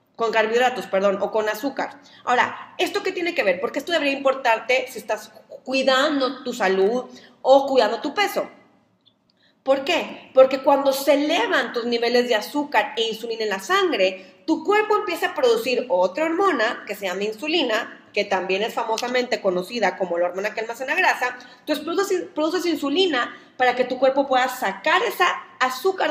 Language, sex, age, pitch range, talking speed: Spanish, female, 30-49, 220-300 Hz, 170 wpm